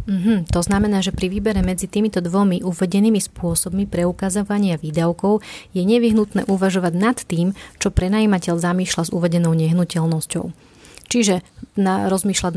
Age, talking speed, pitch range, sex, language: 30-49, 130 wpm, 175-205 Hz, female, Slovak